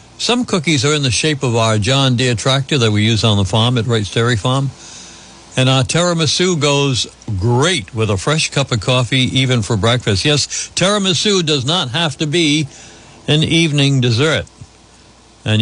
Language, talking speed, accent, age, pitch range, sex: English, 175 wpm, American, 60-79, 110-150 Hz, male